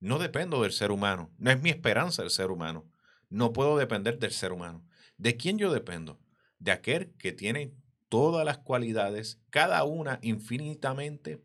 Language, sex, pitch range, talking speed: Spanish, male, 100-130 Hz, 170 wpm